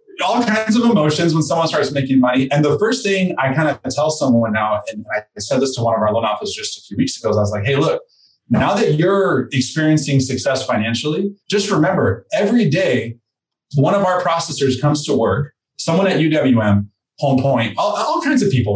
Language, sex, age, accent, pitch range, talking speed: English, male, 30-49, American, 130-195 Hz, 210 wpm